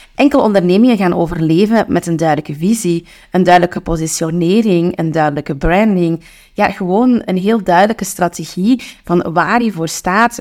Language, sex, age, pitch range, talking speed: Dutch, female, 30-49, 165-205 Hz, 145 wpm